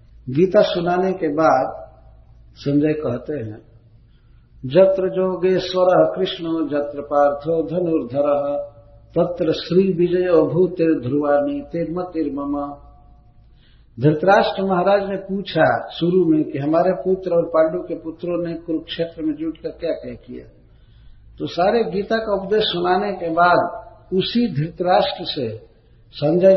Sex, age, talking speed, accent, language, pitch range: male, 60-79, 120 wpm, native, Hindi, 145-185 Hz